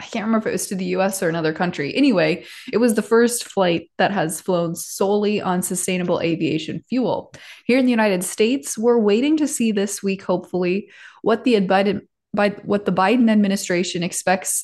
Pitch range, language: 180-230 Hz, English